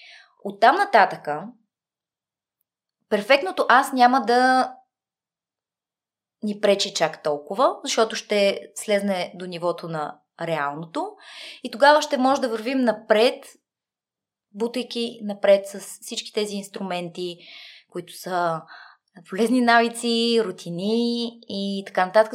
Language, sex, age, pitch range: Bulgarian, female, 20-39, 200-265 Hz